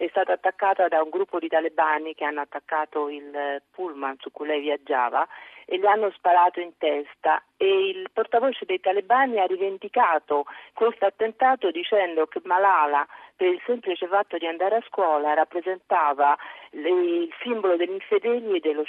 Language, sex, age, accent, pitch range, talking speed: Italian, female, 40-59, native, 155-200 Hz, 155 wpm